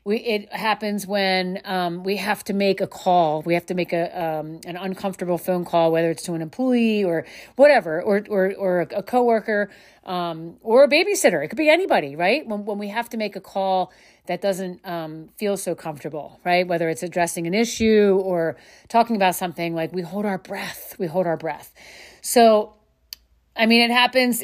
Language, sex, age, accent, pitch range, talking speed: English, female, 30-49, American, 175-225 Hz, 195 wpm